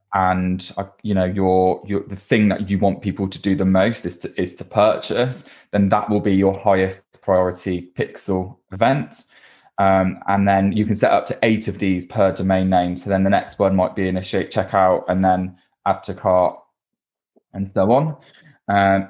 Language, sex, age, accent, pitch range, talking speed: English, male, 20-39, British, 95-105 Hz, 190 wpm